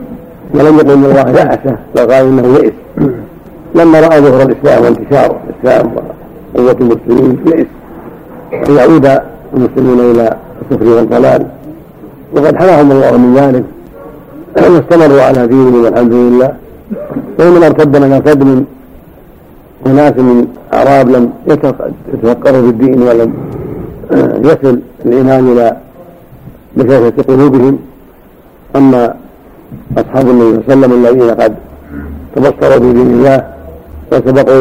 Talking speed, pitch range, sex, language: 110 wpm, 120-140 Hz, male, Arabic